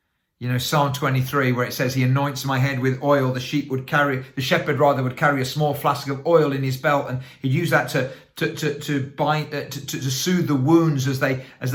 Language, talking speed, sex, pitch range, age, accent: English, 250 wpm, male, 130-155 Hz, 40-59, British